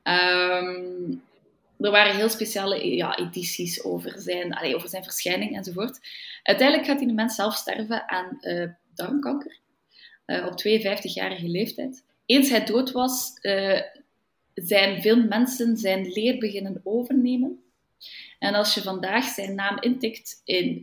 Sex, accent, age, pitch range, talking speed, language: female, Belgian, 20-39, 185-235 Hz, 140 wpm, Dutch